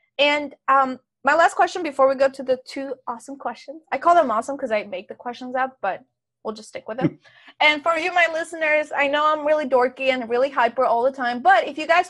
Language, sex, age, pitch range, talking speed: English, female, 20-39, 230-300 Hz, 245 wpm